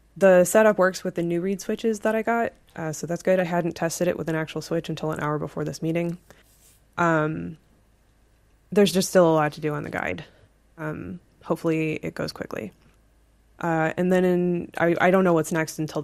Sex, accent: female, American